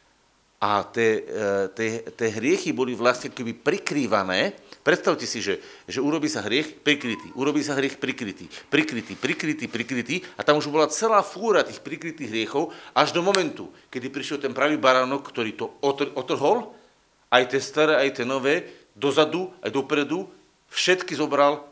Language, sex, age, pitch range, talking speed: Slovak, male, 50-69, 115-155 Hz, 145 wpm